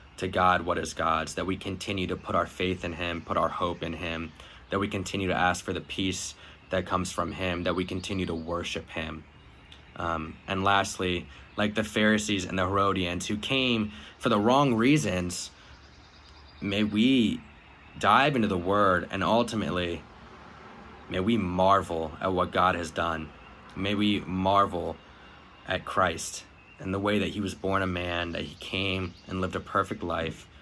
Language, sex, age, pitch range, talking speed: English, male, 20-39, 80-95 Hz, 175 wpm